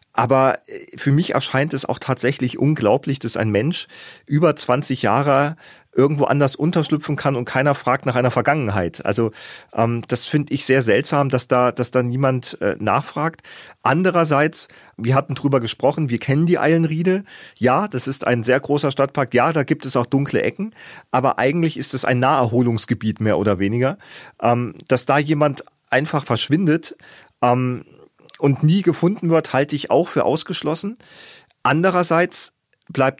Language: German